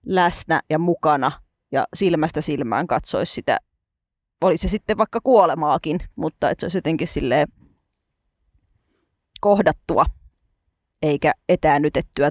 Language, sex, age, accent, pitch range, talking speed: Finnish, female, 20-39, native, 150-215 Hz, 105 wpm